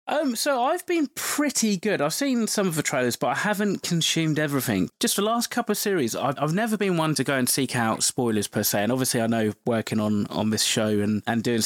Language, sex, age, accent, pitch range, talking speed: English, male, 20-39, British, 110-140 Hz, 245 wpm